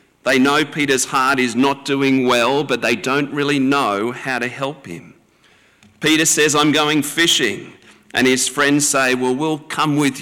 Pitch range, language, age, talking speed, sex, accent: 110-140 Hz, English, 50-69, 175 wpm, male, Australian